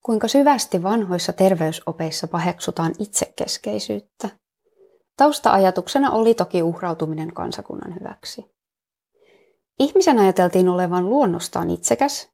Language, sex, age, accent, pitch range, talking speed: Finnish, female, 20-39, native, 180-275 Hz, 85 wpm